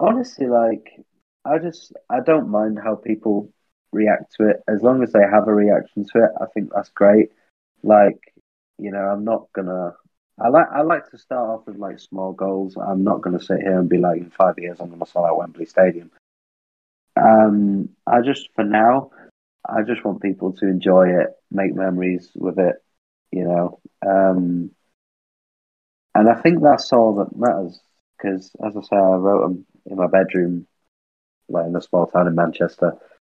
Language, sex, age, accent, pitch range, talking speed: English, male, 20-39, British, 90-105 Hz, 185 wpm